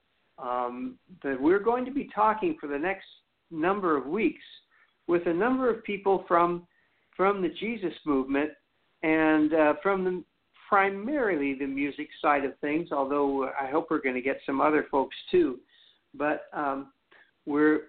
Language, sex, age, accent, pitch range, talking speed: English, male, 60-79, American, 135-185 Hz, 160 wpm